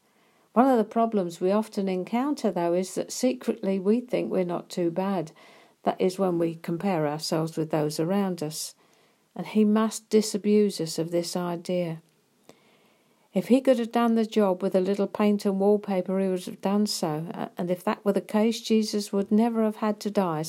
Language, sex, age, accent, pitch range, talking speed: English, female, 50-69, British, 175-215 Hz, 195 wpm